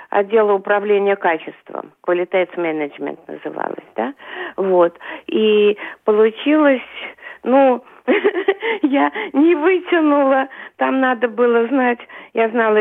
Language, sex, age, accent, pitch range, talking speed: Russian, female, 50-69, native, 205-275 Hz, 90 wpm